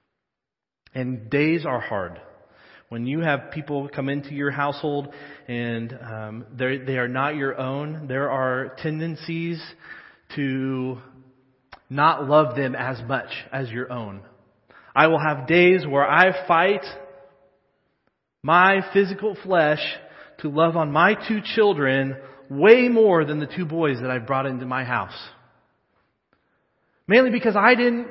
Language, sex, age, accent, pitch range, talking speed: English, male, 30-49, American, 135-220 Hz, 135 wpm